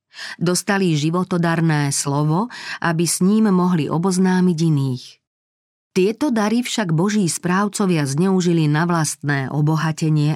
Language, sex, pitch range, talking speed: Slovak, female, 150-195 Hz, 105 wpm